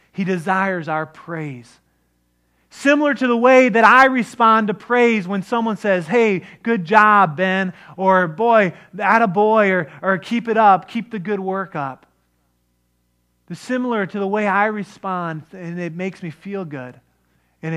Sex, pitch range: male, 130-200 Hz